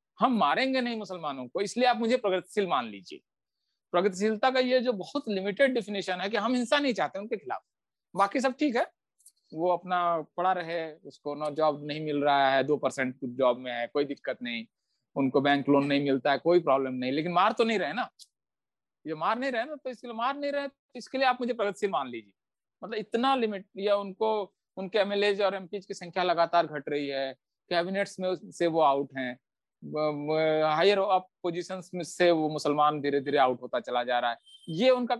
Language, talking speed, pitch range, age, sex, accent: Hindi, 205 wpm, 150-225 Hz, 50-69, male, native